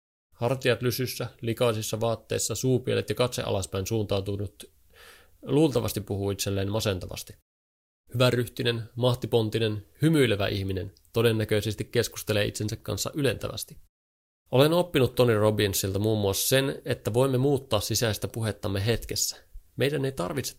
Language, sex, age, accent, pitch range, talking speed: Finnish, male, 30-49, native, 100-125 Hz, 110 wpm